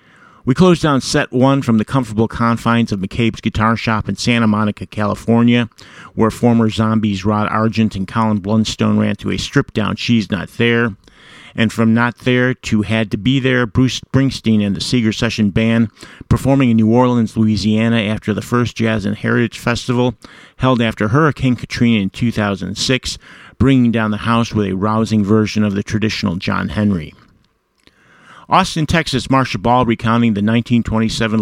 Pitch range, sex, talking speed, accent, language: 105-120 Hz, male, 165 wpm, American, English